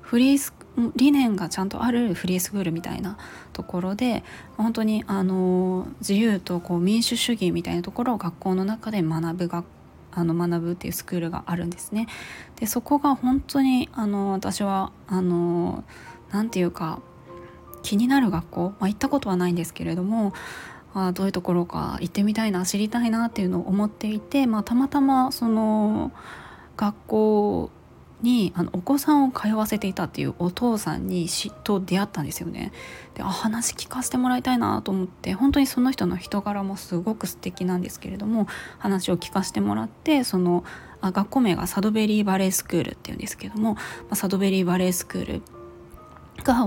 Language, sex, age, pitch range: Japanese, female, 20-39, 180-225 Hz